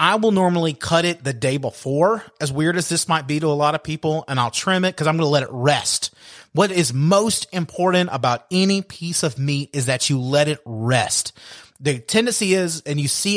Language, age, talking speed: English, 30-49, 230 wpm